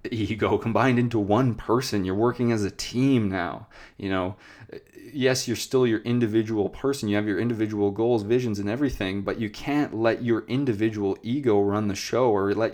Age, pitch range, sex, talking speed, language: 20-39, 100-120 Hz, male, 185 wpm, English